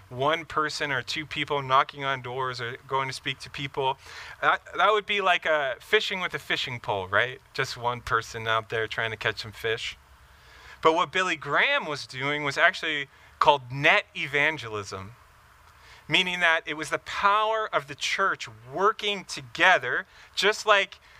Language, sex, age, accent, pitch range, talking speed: English, male, 30-49, American, 125-165 Hz, 170 wpm